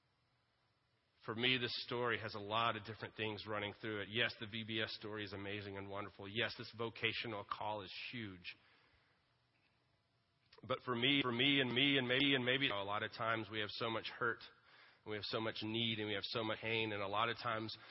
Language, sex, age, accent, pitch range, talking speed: English, male, 30-49, American, 110-140 Hz, 215 wpm